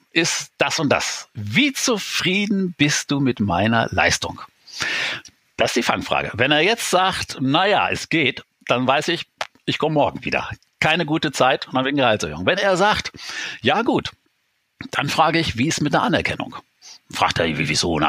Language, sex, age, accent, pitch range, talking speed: German, male, 50-69, German, 115-150 Hz, 180 wpm